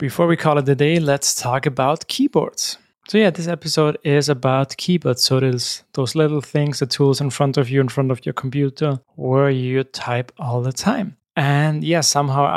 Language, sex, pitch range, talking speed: English, male, 130-155 Hz, 200 wpm